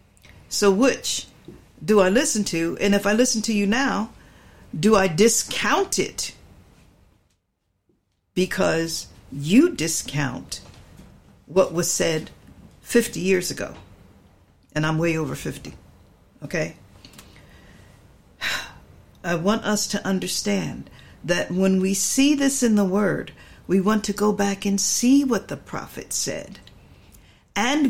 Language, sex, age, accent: English, female, 60-79, American